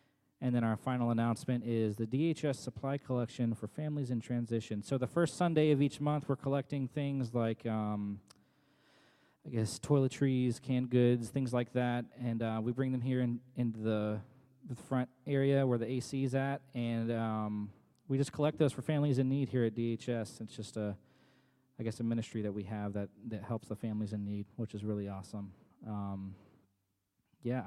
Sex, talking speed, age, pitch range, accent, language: male, 190 wpm, 20-39, 115-145 Hz, American, English